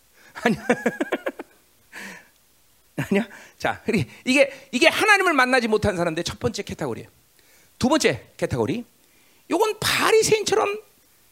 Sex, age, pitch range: male, 40-59, 255-410 Hz